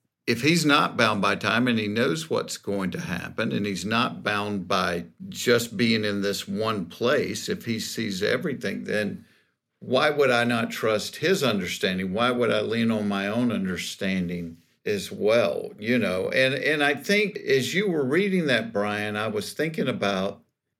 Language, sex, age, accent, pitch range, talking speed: English, male, 50-69, American, 115-165 Hz, 180 wpm